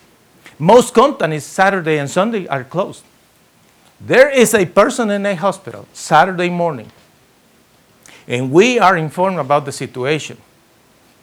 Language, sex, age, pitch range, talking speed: English, male, 50-69, 130-210 Hz, 130 wpm